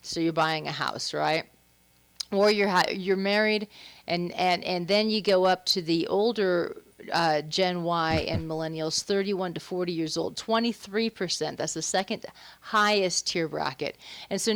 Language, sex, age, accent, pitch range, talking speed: English, female, 40-59, American, 165-200 Hz, 160 wpm